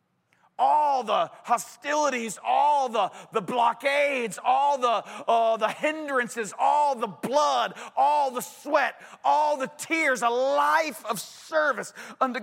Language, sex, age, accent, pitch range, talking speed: English, male, 40-59, American, 210-265 Hz, 125 wpm